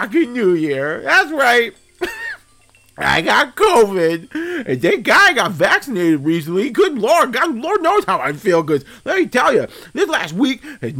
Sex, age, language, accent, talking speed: male, 40-59, English, American, 165 wpm